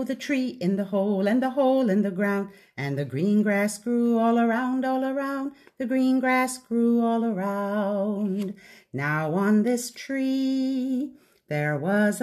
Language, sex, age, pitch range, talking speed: English, female, 50-69, 200-255 Hz, 155 wpm